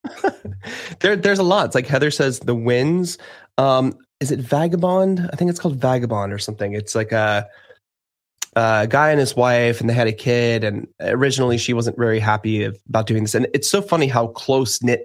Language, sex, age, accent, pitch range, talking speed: English, male, 20-39, American, 110-145 Hz, 205 wpm